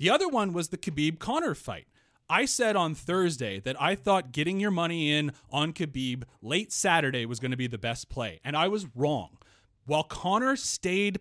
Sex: male